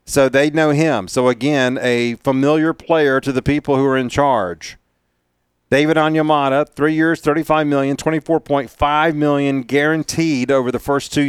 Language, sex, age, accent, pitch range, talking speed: English, male, 40-59, American, 115-150 Hz, 155 wpm